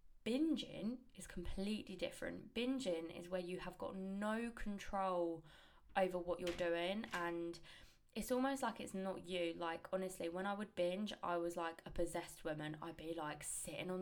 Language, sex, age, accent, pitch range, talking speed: English, female, 20-39, British, 175-215 Hz, 170 wpm